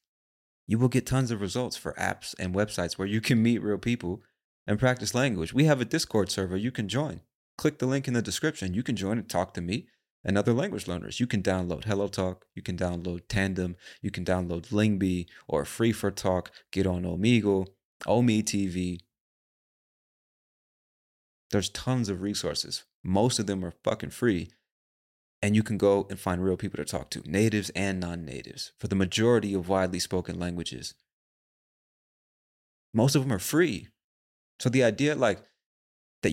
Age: 30-49